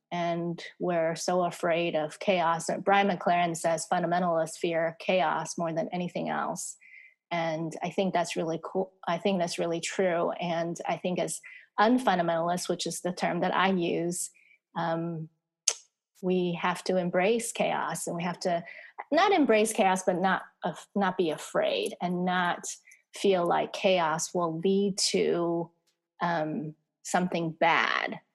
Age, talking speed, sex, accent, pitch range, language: 30-49, 145 wpm, female, American, 170-200 Hz, English